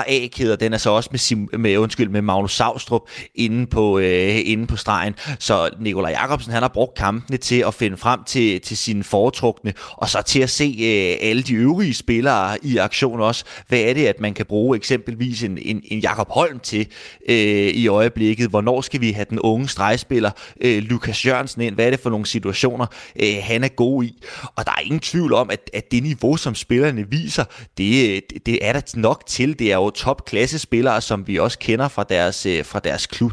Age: 30-49